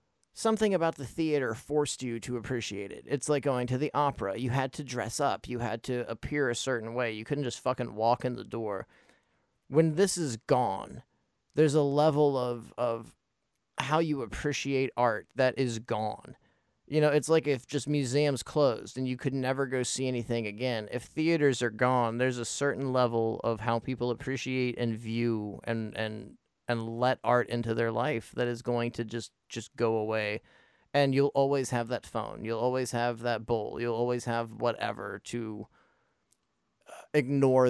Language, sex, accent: English, male, American